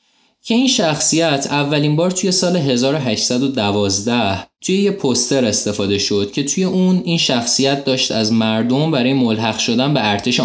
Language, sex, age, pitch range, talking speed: Persian, male, 20-39, 110-170 Hz, 150 wpm